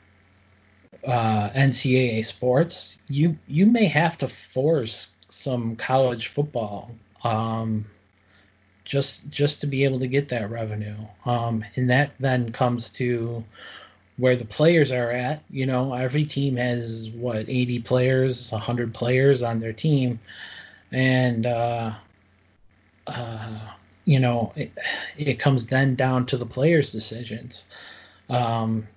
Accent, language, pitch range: American, English, 110-130 Hz